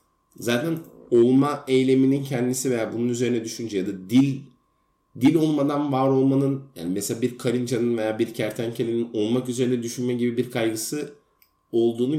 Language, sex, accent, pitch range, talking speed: Turkish, male, native, 110-135 Hz, 145 wpm